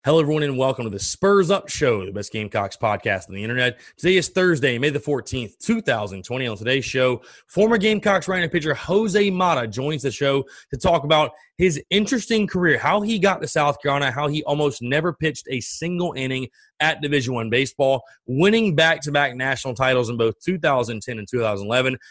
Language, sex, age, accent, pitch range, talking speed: English, male, 30-49, American, 125-160 Hz, 185 wpm